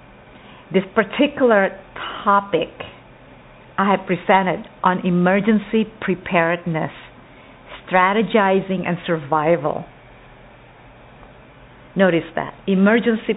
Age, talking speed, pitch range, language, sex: 50-69, 65 wpm, 165-200 Hz, English, female